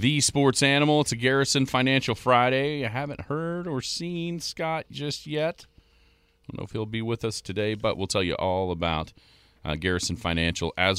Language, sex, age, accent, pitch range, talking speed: English, male, 40-59, American, 80-115 Hz, 190 wpm